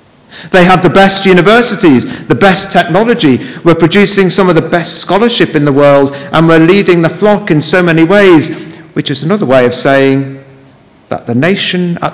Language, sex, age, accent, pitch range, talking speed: English, male, 50-69, British, 130-175 Hz, 185 wpm